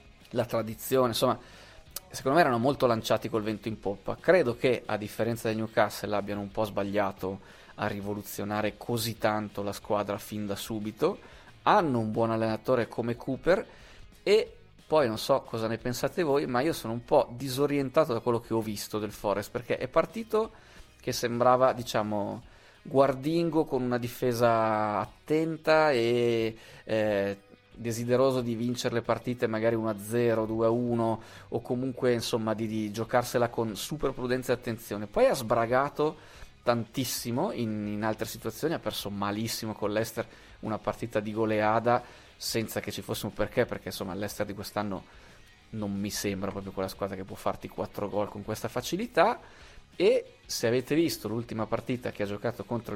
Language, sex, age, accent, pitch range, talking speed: Italian, male, 20-39, native, 105-125 Hz, 160 wpm